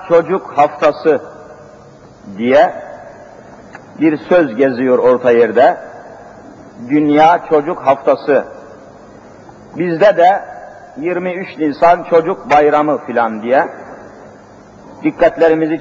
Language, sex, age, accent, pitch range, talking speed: Turkish, male, 50-69, native, 150-190 Hz, 75 wpm